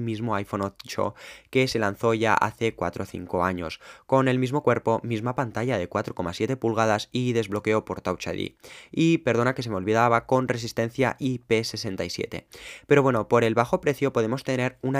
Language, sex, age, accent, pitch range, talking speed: Spanish, male, 20-39, Spanish, 105-130 Hz, 175 wpm